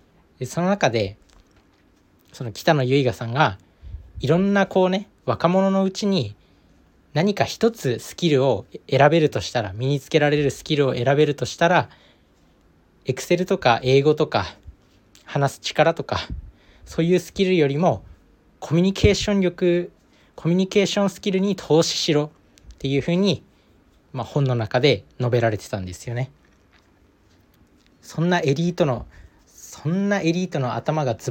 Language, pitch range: Japanese, 95-165 Hz